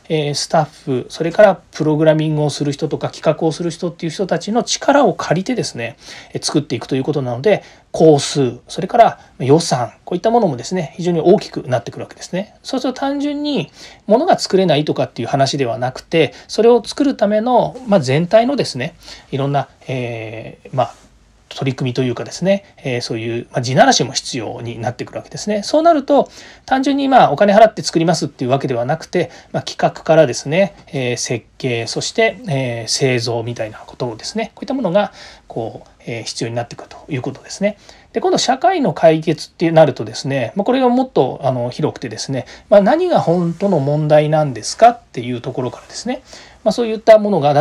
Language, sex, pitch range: Japanese, male, 135-210 Hz